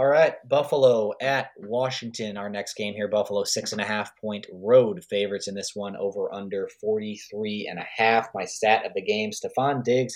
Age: 20-39